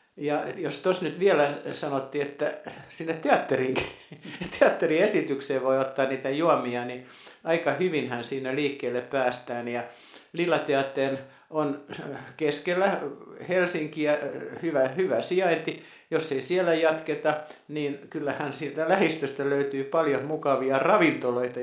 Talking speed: 115 wpm